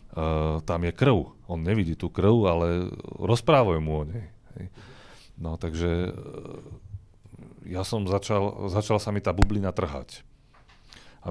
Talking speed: 145 wpm